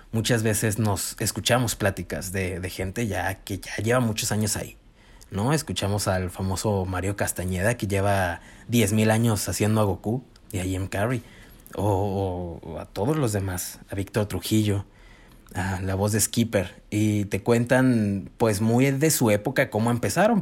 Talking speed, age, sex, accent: 170 wpm, 30-49, male, Mexican